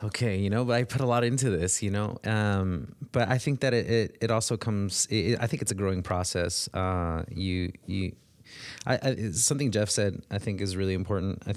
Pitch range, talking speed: 95-115 Hz, 230 wpm